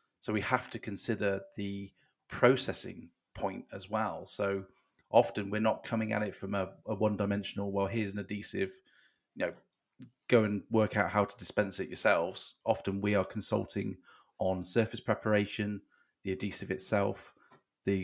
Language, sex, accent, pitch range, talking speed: English, male, British, 100-115 Hz, 160 wpm